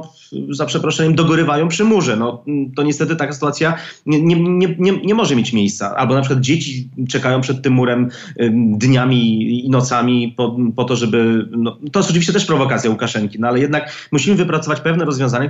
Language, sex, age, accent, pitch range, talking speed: Polish, male, 30-49, native, 125-165 Hz, 160 wpm